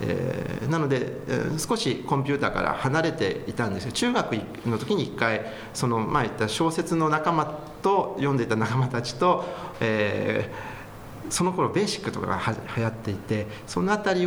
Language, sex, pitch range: Japanese, male, 105-150 Hz